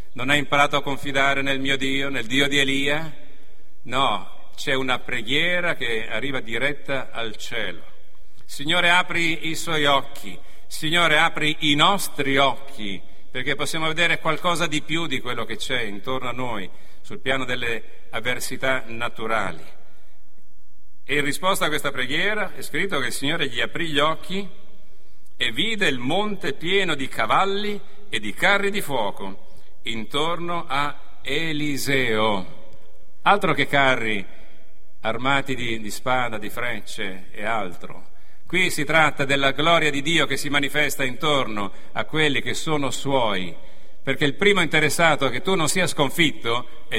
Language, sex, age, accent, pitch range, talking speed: Italian, male, 50-69, native, 125-160 Hz, 150 wpm